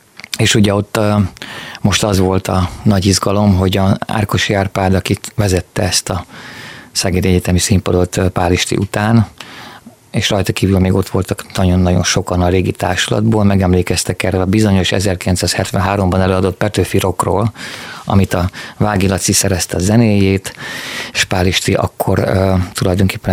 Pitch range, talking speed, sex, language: 95-105 Hz, 140 wpm, male, Hungarian